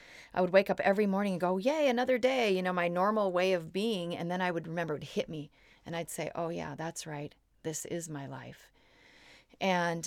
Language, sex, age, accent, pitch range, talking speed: English, female, 40-59, American, 165-195 Hz, 230 wpm